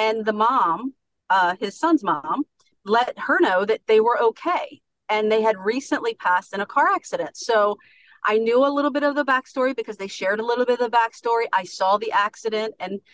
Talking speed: 210 wpm